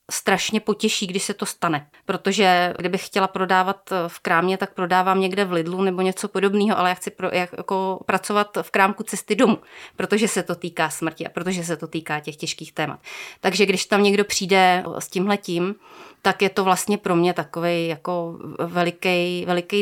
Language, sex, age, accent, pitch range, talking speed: Czech, female, 30-49, native, 170-200 Hz, 180 wpm